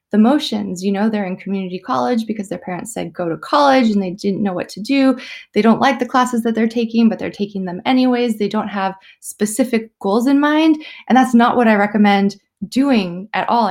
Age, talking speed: 20-39, 225 wpm